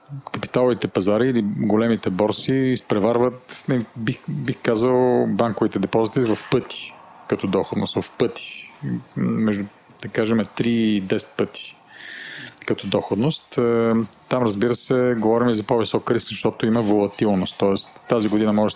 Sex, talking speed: male, 130 wpm